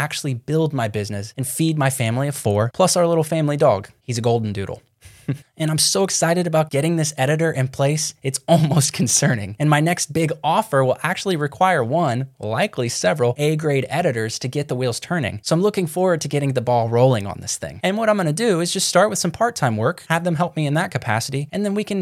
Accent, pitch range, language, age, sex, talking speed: American, 120-160 Hz, English, 10-29, male, 230 wpm